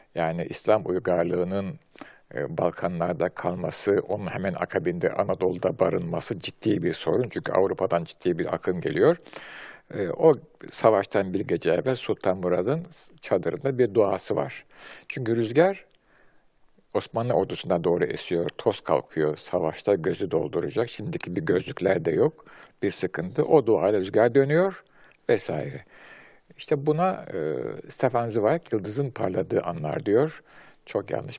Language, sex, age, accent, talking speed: Turkish, male, 50-69, native, 120 wpm